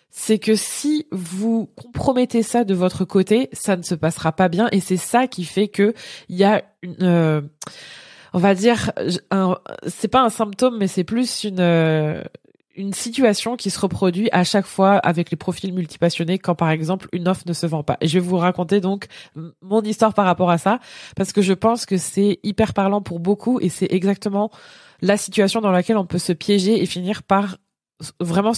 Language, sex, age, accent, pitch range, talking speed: French, female, 20-39, French, 180-215 Hz, 200 wpm